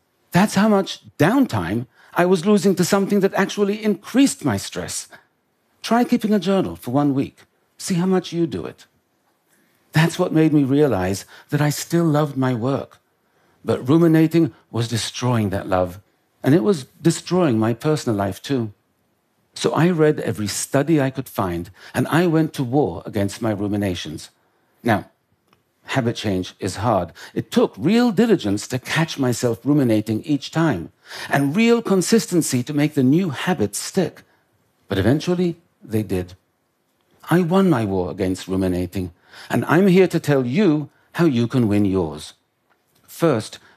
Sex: male